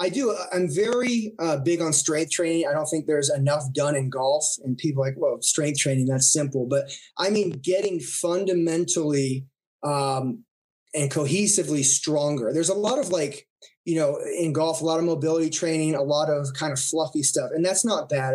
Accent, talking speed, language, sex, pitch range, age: American, 195 wpm, English, male, 150-185 Hz, 20-39